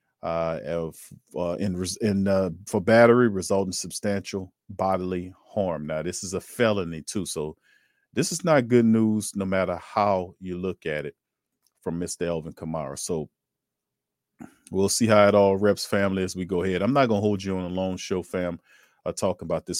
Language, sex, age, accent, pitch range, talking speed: English, male, 40-59, American, 90-100 Hz, 185 wpm